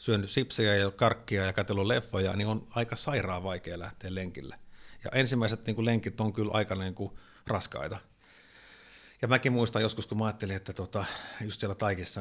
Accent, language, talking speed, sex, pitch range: native, Finnish, 180 wpm, male, 100-130 Hz